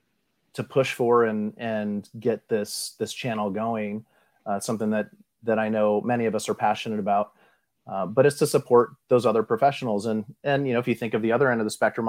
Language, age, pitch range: English, 30-49, 105-120 Hz